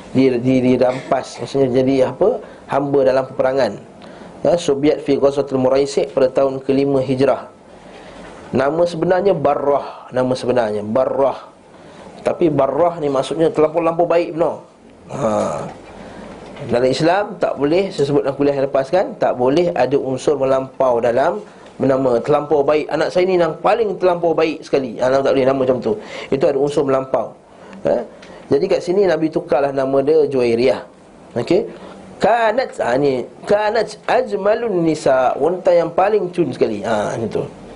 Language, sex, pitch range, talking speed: Malay, male, 130-170 Hz, 150 wpm